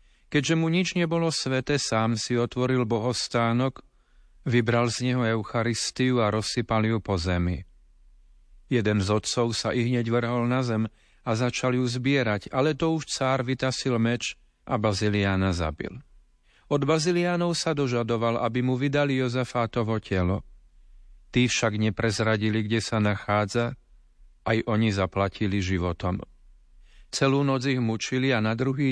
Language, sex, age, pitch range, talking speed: Slovak, male, 40-59, 105-130 Hz, 135 wpm